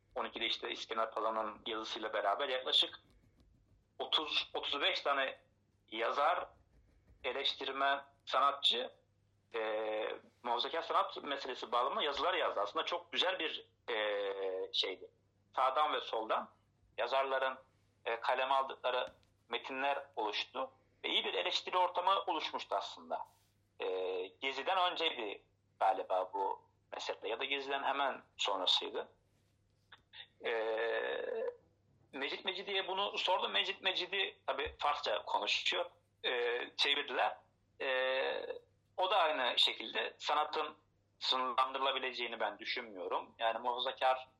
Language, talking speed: Turkish, 100 wpm